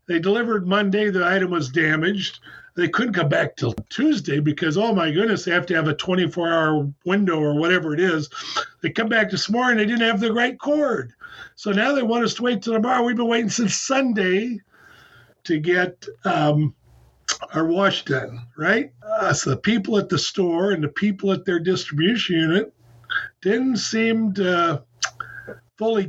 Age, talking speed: 50-69, 180 wpm